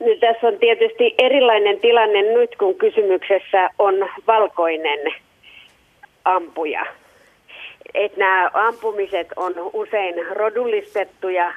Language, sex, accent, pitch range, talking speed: Finnish, female, native, 175-220 Hz, 90 wpm